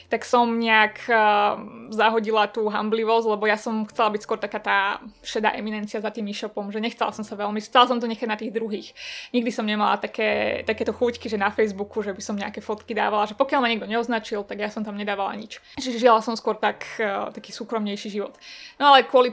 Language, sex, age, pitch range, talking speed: Slovak, female, 20-39, 215-245 Hz, 210 wpm